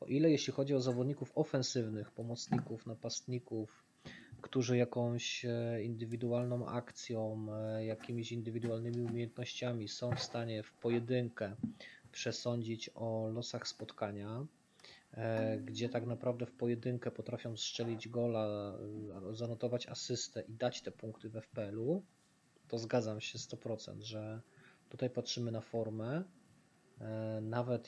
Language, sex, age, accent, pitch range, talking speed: Polish, male, 20-39, native, 110-125 Hz, 110 wpm